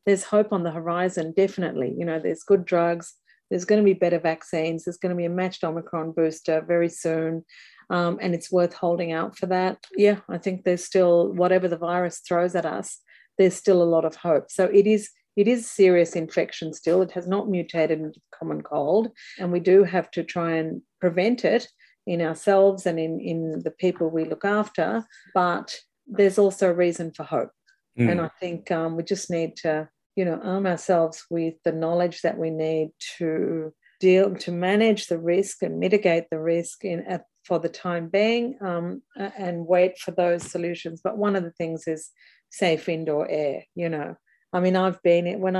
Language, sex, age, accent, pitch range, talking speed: English, female, 40-59, Australian, 165-195 Hz, 195 wpm